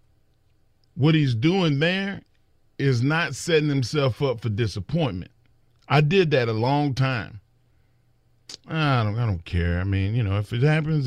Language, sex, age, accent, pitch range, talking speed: English, male, 40-59, American, 110-145 Hz, 155 wpm